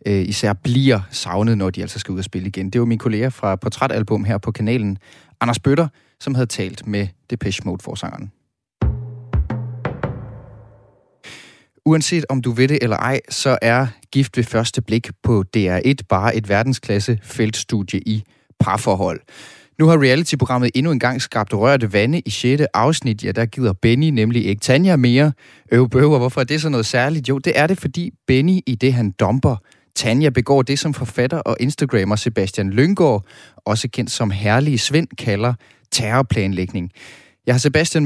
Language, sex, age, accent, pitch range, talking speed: Danish, male, 30-49, native, 110-135 Hz, 165 wpm